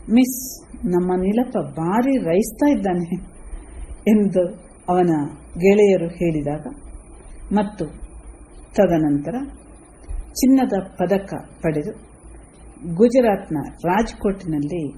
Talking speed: 70 wpm